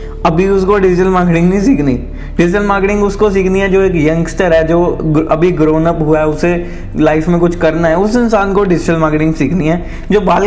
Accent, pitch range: native, 165-200 Hz